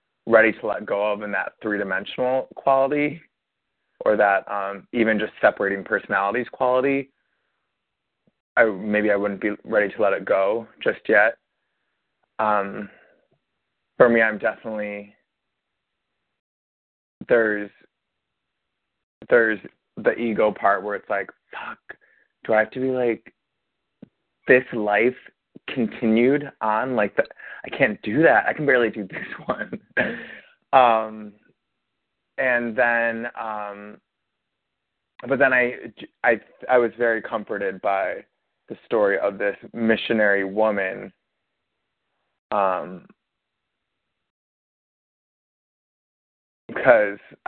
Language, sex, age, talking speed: English, male, 20-39, 110 wpm